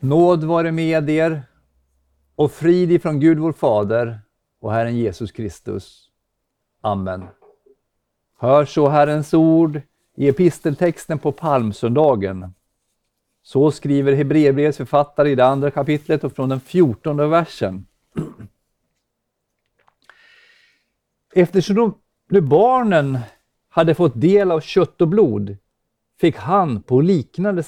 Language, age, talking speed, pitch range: Swedish, 50-69, 110 wpm, 120-170 Hz